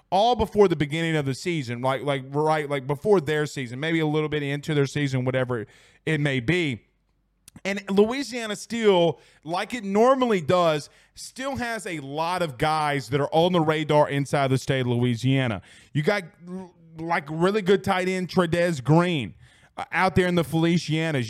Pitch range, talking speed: 145-175 Hz, 175 wpm